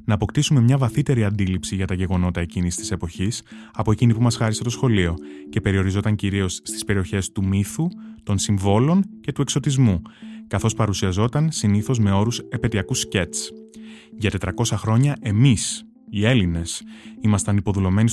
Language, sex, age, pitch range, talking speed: Greek, male, 20-39, 100-125 Hz, 150 wpm